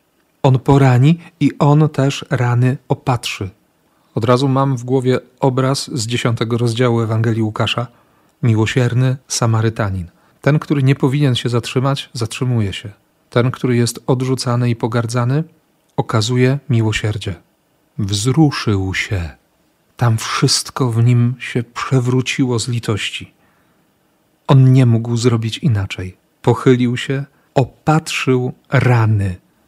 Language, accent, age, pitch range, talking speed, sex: Polish, native, 40-59, 115-135 Hz, 110 wpm, male